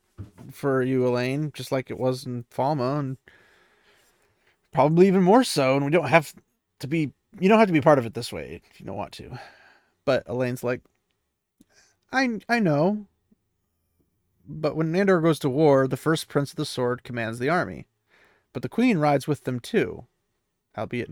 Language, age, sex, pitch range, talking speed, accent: English, 30-49, male, 135-185 Hz, 180 wpm, American